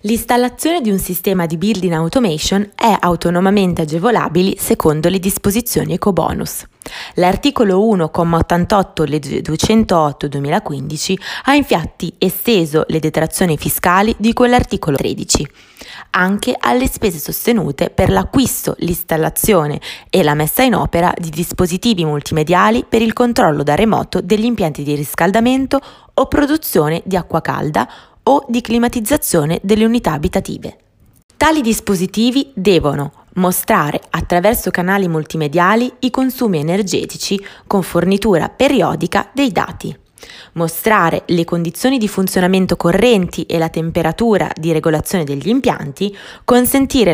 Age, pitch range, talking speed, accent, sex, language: 20-39, 165-230 Hz, 115 wpm, native, female, Italian